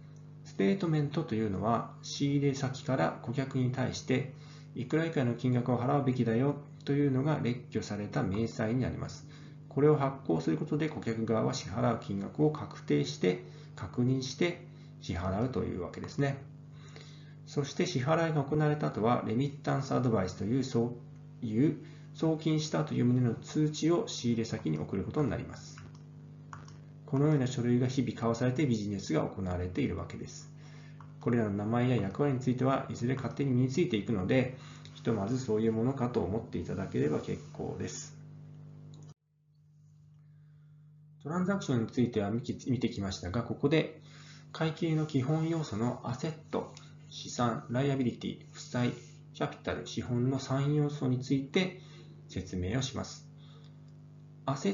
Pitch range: 120-150 Hz